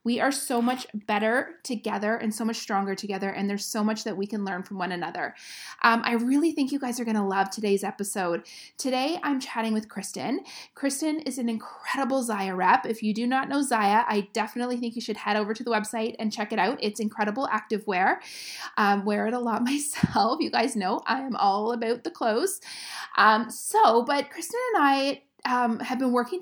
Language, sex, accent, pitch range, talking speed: English, female, American, 200-250 Hz, 215 wpm